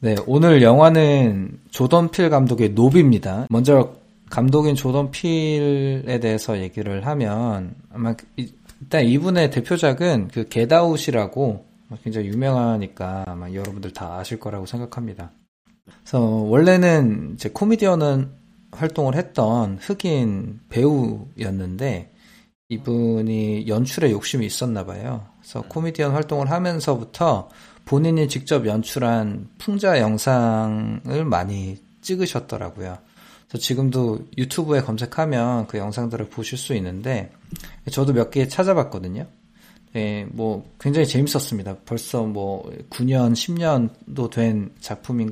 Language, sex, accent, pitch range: Korean, male, native, 110-145 Hz